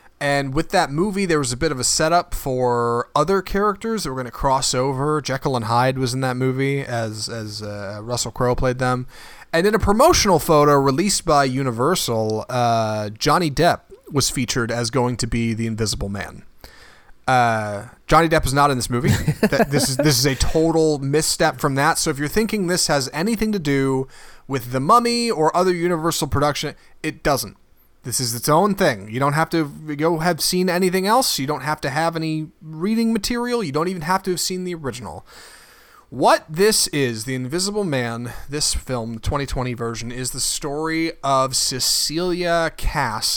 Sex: male